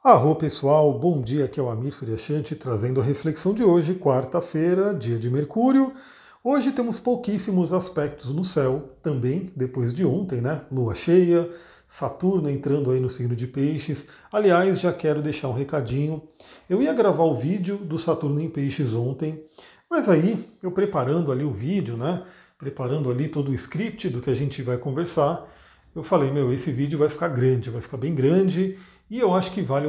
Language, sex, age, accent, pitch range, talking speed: Portuguese, male, 40-59, Brazilian, 135-180 Hz, 180 wpm